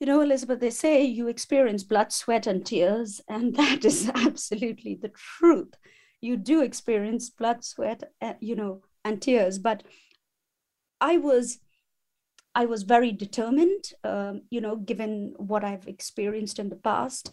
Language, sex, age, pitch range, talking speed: English, female, 30-49, 210-270 Hz, 150 wpm